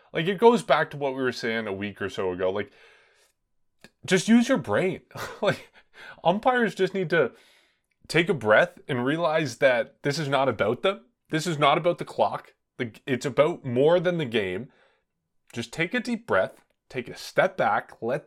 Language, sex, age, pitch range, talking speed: English, male, 20-39, 115-165 Hz, 185 wpm